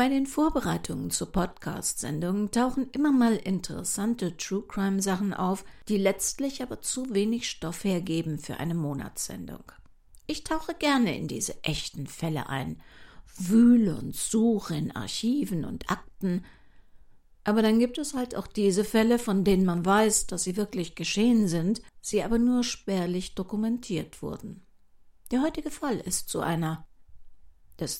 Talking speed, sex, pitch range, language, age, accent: 140 wpm, female, 175-240 Hz, German, 50-69, German